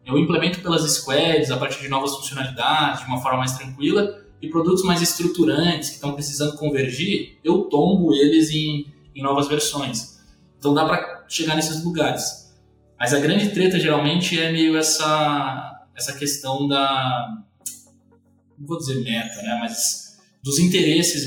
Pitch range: 135-160 Hz